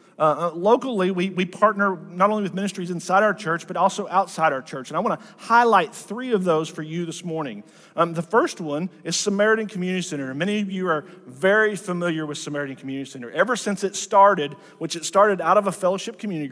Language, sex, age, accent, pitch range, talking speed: English, male, 40-59, American, 150-195 Hz, 215 wpm